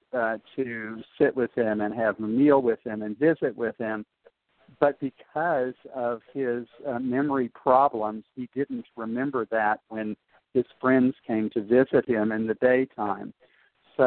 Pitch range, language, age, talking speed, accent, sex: 110-130 Hz, English, 50-69, 160 wpm, American, male